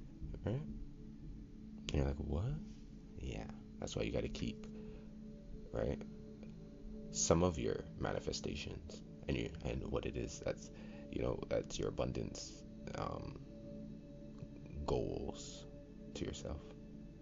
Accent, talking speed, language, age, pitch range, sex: American, 110 wpm, English, 30-49, 70-75 Hz, male